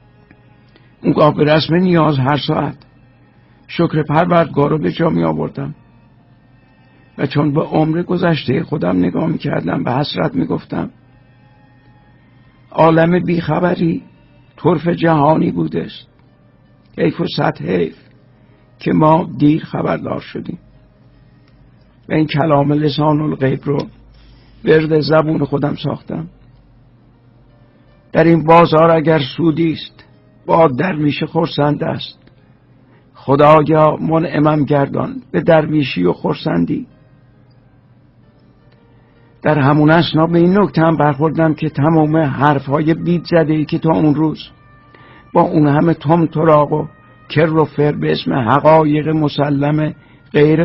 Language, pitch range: Persian, 130-160 Hz